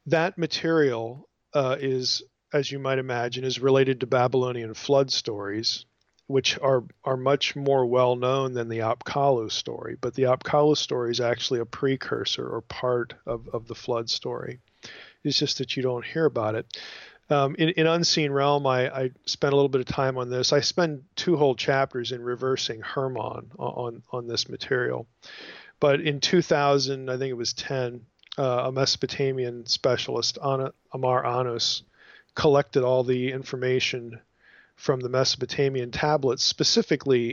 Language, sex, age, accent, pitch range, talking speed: English, male, 40-59, American, 120-140 Hz, 160 wpm